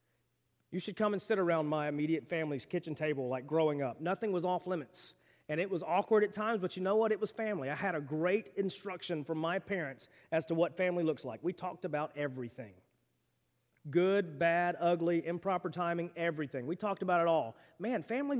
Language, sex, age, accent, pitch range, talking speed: English, male, 30-49, American, 180-270 Hz, 200 wpm